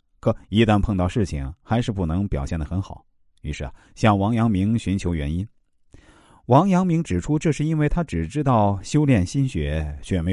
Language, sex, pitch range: Chinese, male, 80-120 Hz